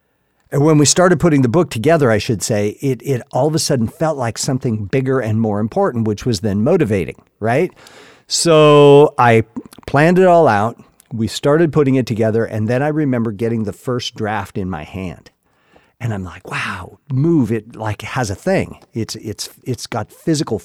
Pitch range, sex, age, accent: 110-150 Hz, male, 50-69, American